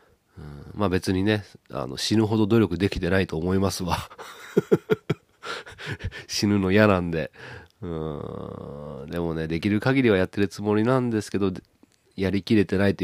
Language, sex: Japanese, male